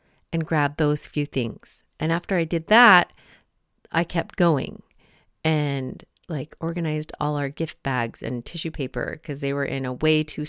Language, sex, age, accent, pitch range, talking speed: English, female, 30-49, American, 150-185 Hz, 170 wpm